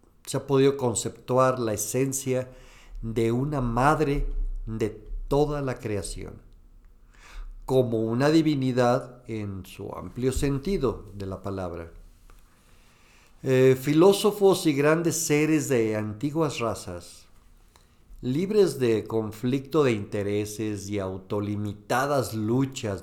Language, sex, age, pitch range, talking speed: Spanish, male, 50-69, 100-130 Hz, 100 wpm